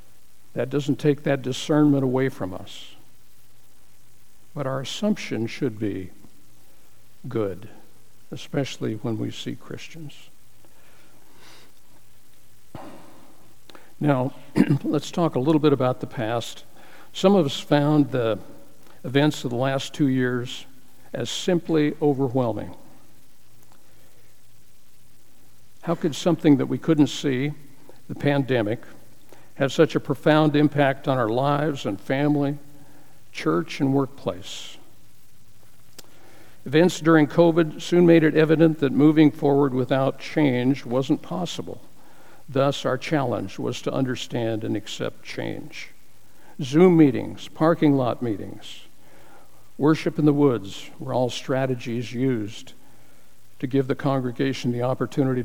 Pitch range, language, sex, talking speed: 125-150 Hz, English, male, 115 wpm